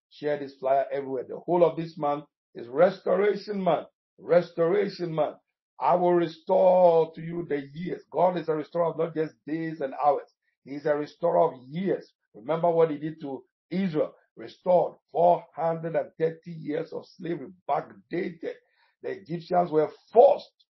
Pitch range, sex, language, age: 145-175 Hz, male, English, 60-79